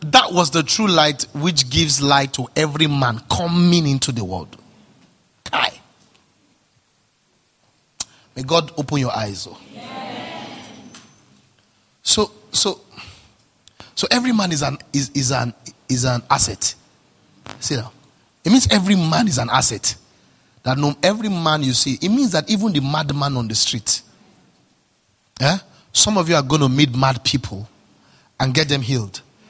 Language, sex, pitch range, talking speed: English, male, 120-165 Hz, 140 wpm